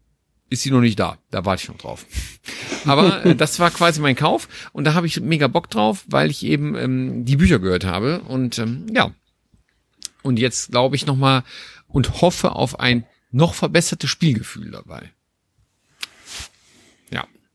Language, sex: German, male